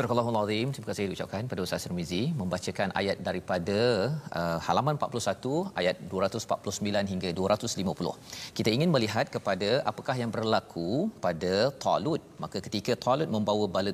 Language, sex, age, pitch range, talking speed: Malayalam, male, 40-59, 100-120 Hz, 140 wpm